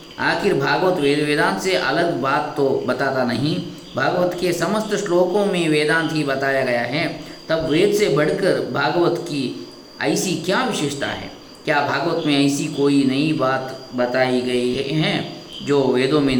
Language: Kannada